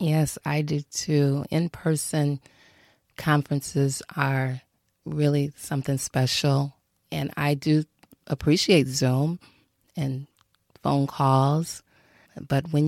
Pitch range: 135-155 Hz